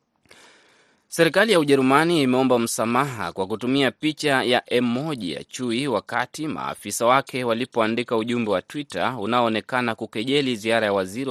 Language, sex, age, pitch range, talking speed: Swahili, male, 30-49, 105-130 Hz, 125 wpm